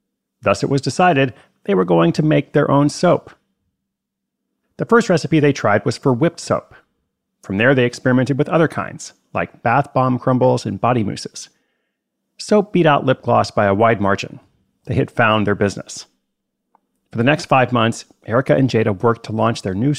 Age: 40-59